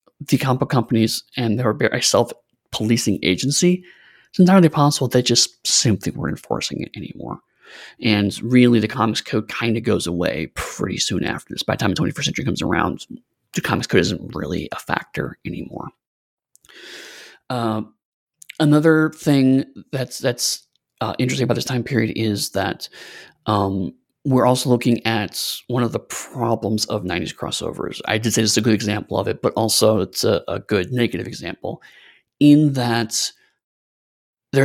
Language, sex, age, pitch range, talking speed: English, male, 30-49, 110-140 Hz, 160 wpm